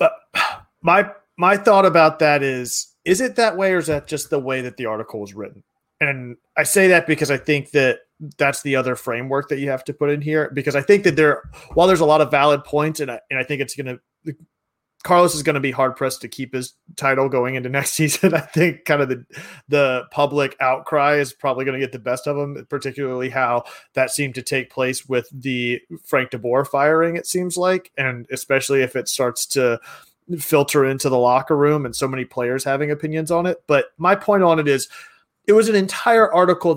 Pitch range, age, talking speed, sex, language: 130-160 Hz, 30-49, 220 wpm, male, English